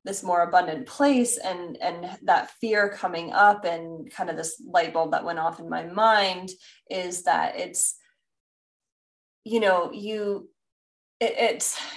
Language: English